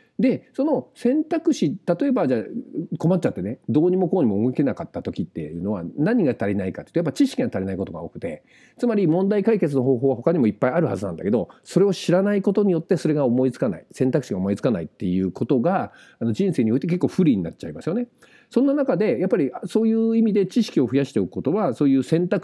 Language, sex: Japanese, male